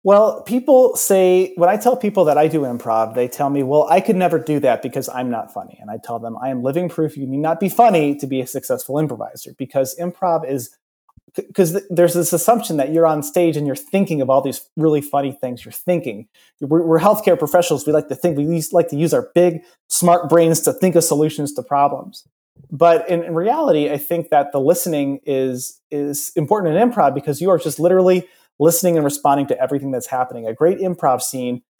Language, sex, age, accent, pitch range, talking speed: English, male, 30-49, American, 135-175 Hz, 220 wpm